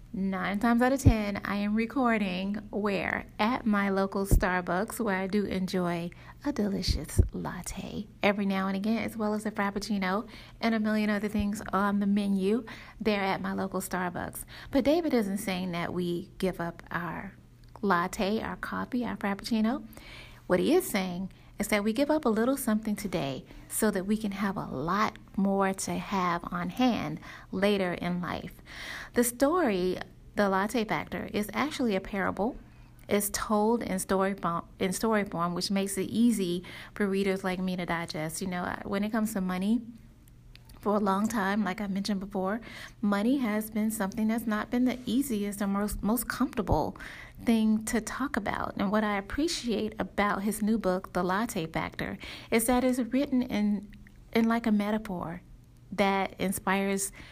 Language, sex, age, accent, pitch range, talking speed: English, female, 30-49, American, 190-225 Hz, 175 wpm